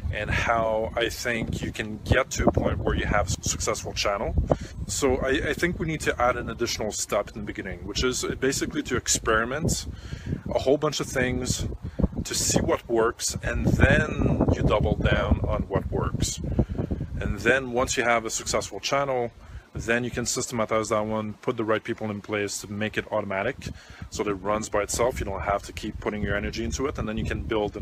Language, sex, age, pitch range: English, male, 30-49, 105-125 Hz